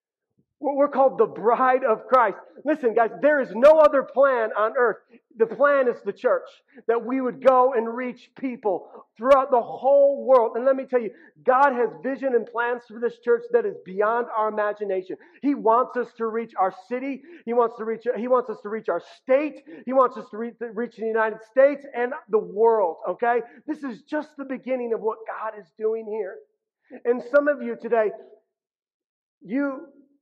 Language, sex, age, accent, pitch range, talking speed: English, male, 40-59, American, 225-280 Hz, 195 wpm